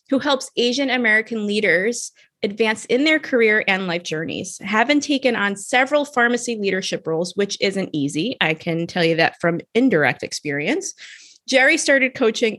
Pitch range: 185-270 Hz